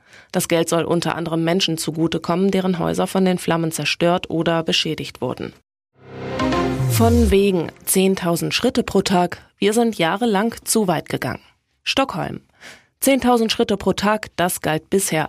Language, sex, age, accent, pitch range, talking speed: German, female, 20-39, German, 165-205 Hz, 140 wpm